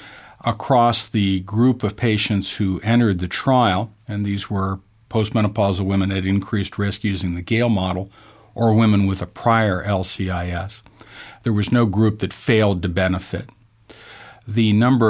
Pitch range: 95-115 Hz